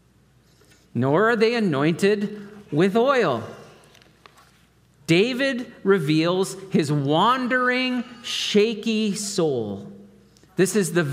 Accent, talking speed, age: American, 80 wpm, 40-59